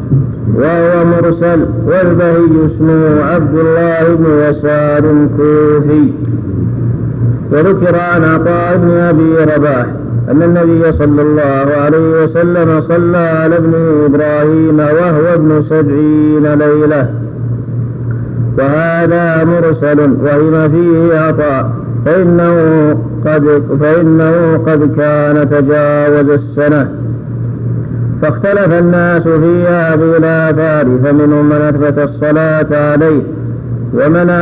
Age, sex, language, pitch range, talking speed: 50-69, male, Arabic, 145-165 Hz, 90 wpm